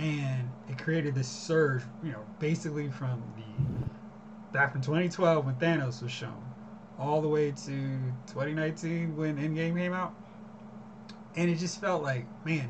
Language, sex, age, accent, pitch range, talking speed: English, male, 30-49, American, 135-205 Hz, 150 wpm